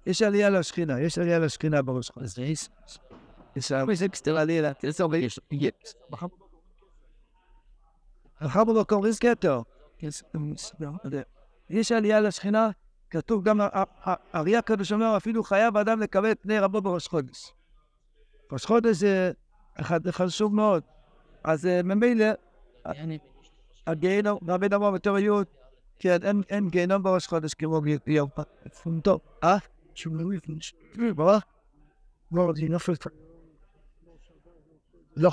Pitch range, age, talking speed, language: 155-205 Hz, 60-79, 75 wpm, Hebrew